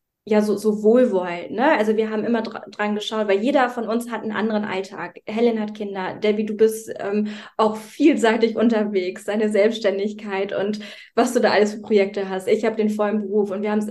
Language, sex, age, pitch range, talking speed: German, female, 20-39, 210-245 Hz, 210 wpm